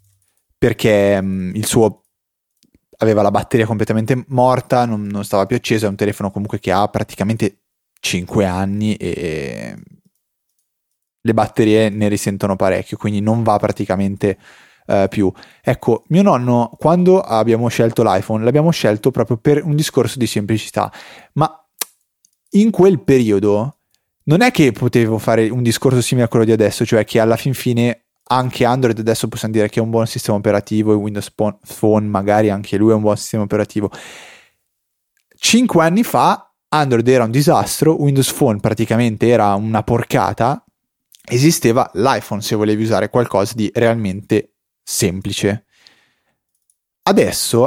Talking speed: 145 wpm